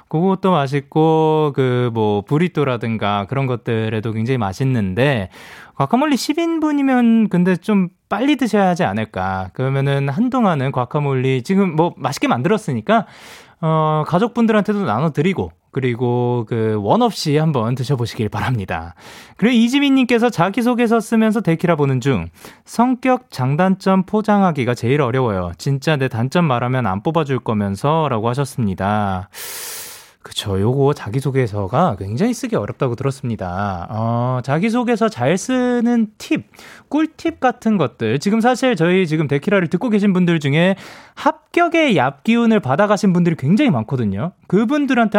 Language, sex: Korean, male